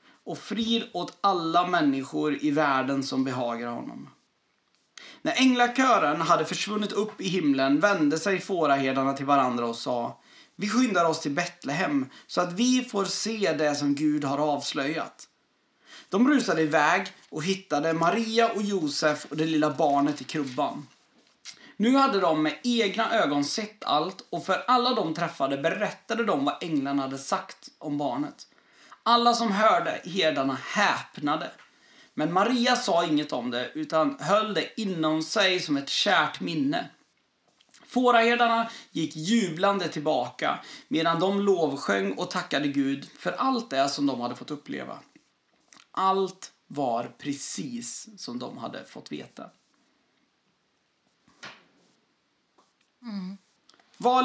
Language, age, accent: Swedish, 30-49, native